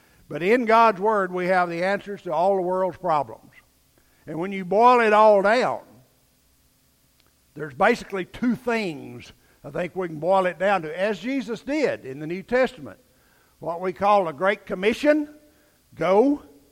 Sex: male